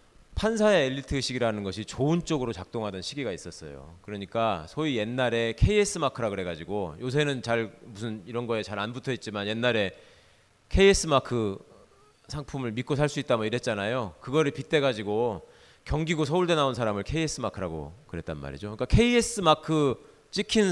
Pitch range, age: 120-175 Hz, 40-59